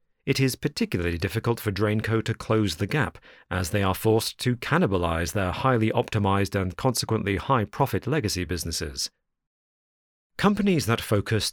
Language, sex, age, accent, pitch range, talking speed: English, male, 40-59, British, 95-115 Hz, 140 wpm